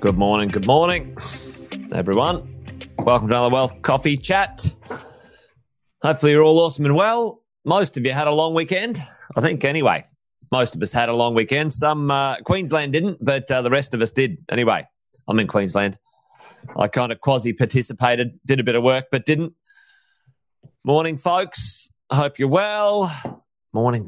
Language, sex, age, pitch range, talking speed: English, male, 30-49, 115-155 Hz, 165 wpm